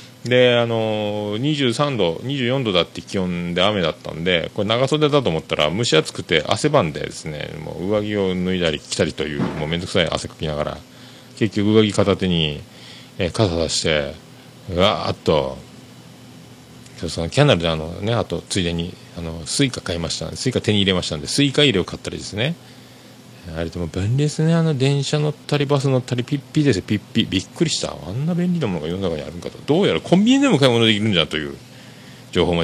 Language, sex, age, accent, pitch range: Japanese, male, 40-59, native, 90-135 Hz